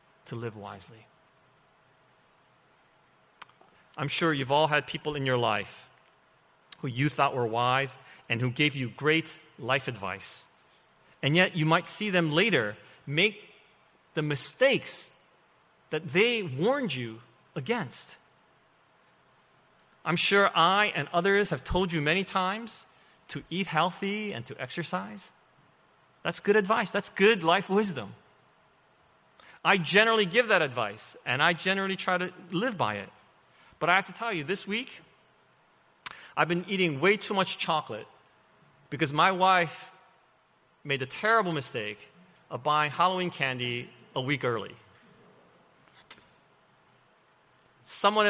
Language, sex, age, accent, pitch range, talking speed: English, male, 30-49, American, 135-190 Hz, 130 wpm